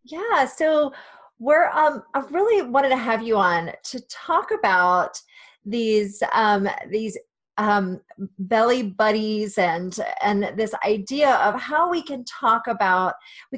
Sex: female